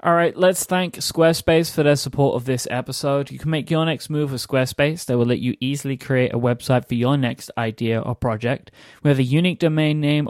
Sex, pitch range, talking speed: male, 125-155 Hz, 220 wpm